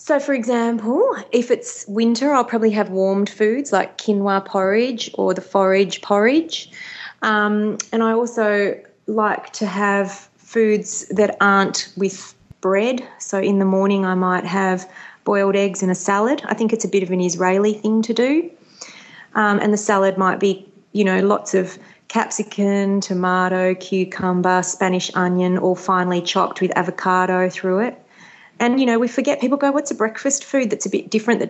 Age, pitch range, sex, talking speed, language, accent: 30-49, 185-225 Hz, female, 175 wpm, English, Australian